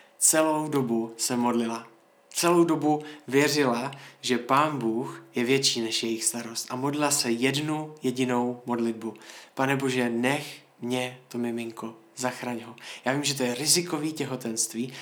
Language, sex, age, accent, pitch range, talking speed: Czech, male, 20-39, native, 115-140 Hz, 145 wpm